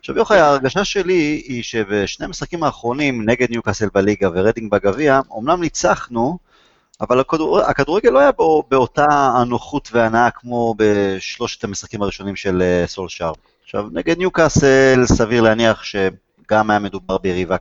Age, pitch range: 30-49, 100-135 Hz